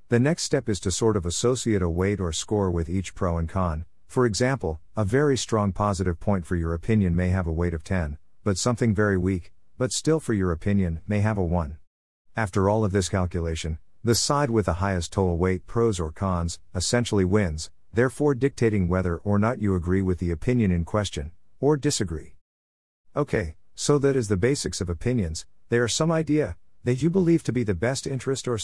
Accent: American